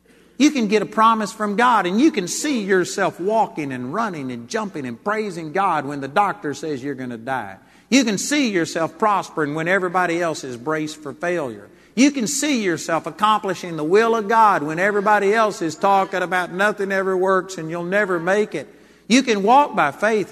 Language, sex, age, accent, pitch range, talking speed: English, male, 50-69, American, 145-195 Hz, 200 wpm